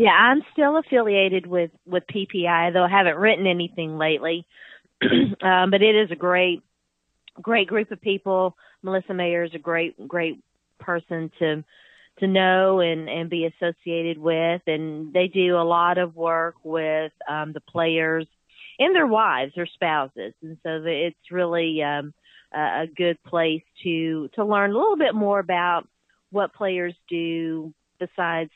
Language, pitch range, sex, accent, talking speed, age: English, 160-185 Hz, female, American, 155 wpm, 40-59